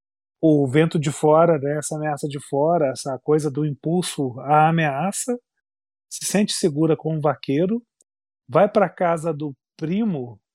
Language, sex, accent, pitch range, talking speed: Portuguese, male, Brazilian, 135-165 Hz, 160 wpm